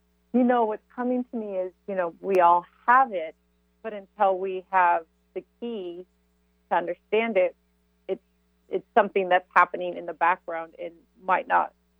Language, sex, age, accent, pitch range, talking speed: English, female, 40-59, American, 150-190 Hz, 165 wpm